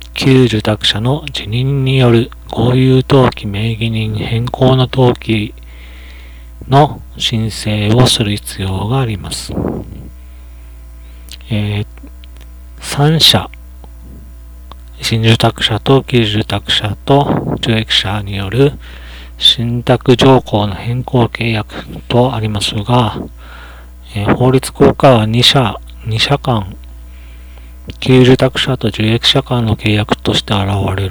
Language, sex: Japanese, male